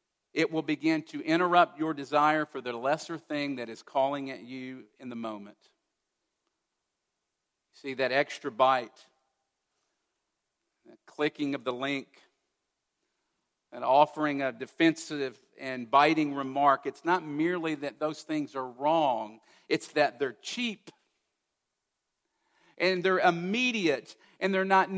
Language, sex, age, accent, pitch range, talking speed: English, male, 50-69, American, 140-205 Hz, 125 wpm